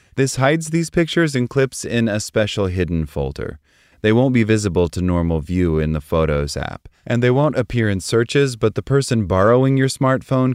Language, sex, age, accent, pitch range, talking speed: English, male, 30-49, American, 85-120 Hz, 195 wpm